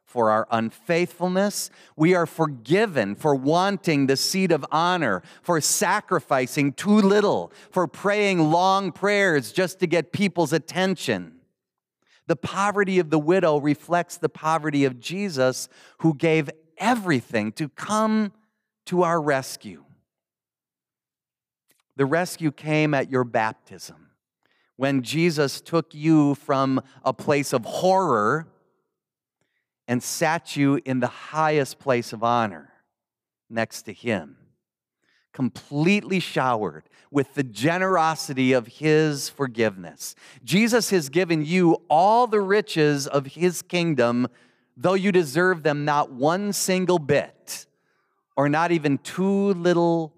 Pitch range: 130-180 Hz